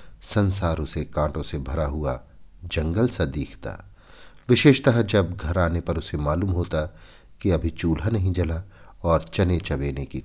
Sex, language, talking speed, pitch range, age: male, Hindi, 150 wpm, 75-100 Hz, 50-69